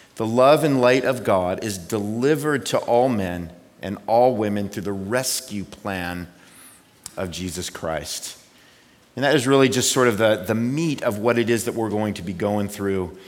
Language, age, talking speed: English, 40-59, 190 wpm